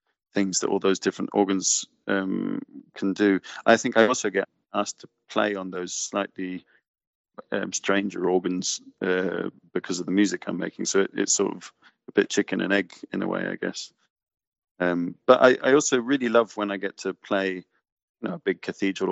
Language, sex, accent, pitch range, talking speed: English, male, British, 95-105 Hz, 185 wpm